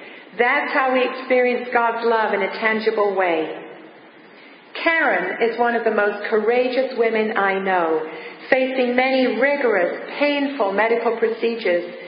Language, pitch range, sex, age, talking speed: English, 225-275 Hz, female, 50-69, 130 wpm